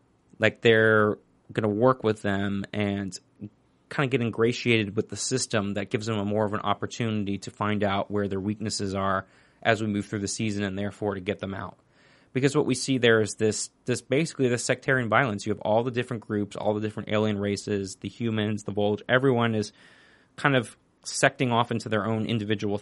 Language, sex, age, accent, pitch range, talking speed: English, male, 30-49, American, 100-130 Hz, 210 wpm